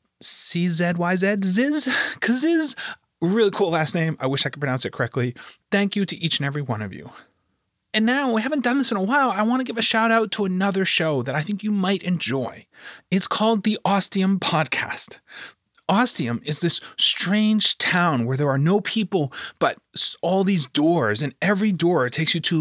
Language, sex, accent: English, male, American